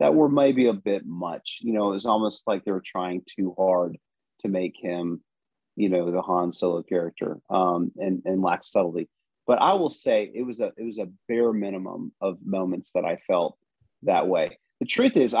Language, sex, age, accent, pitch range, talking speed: English, male, 40-59, American, 95-115 Hz, 205 wpm